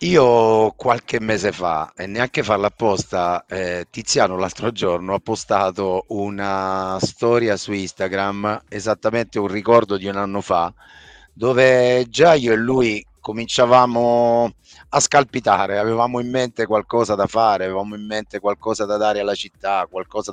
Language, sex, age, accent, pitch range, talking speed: Italian, male, 30-49, native, 90-110 Hz, 140 wpm